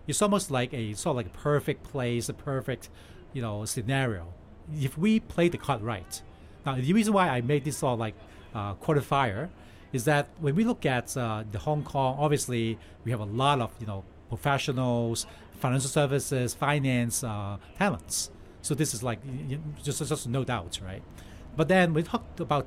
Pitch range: 110-155 Hz